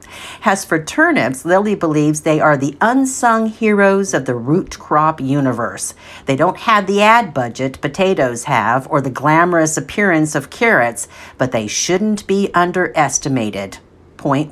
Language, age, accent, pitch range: English, 50-69, American, 135-205 Hz